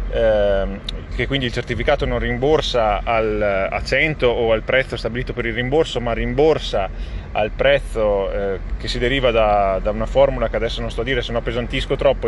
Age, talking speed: 30-49, 170 wpm